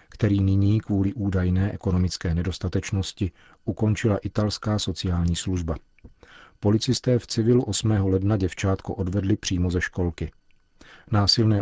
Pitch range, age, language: 90-105 Hz, 40-59, Czech